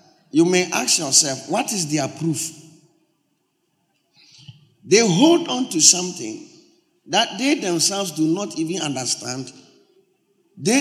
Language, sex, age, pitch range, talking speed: English, male, 50-69, 150-220 Hz, 115 wpm